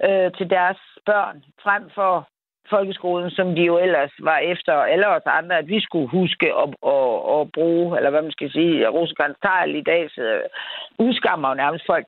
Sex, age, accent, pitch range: female, 60-79, native, 180-245 Hz